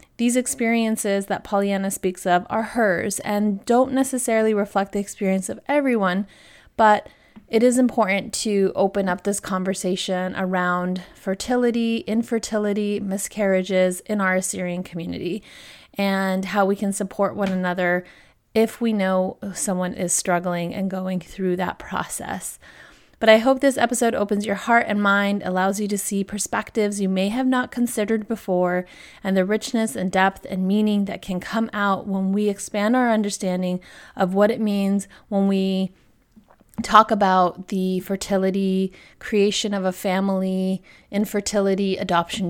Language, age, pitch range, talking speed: English, 30-49, 190-215 Hz, 145 wpm